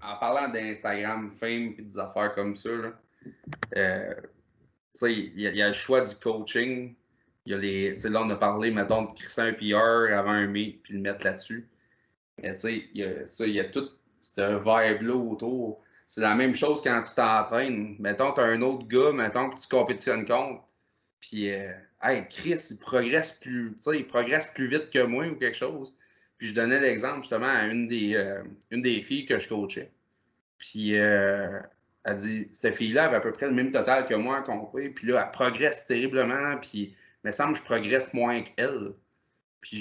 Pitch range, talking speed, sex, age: 105-130 Hz, 190 wpm, male, 20-39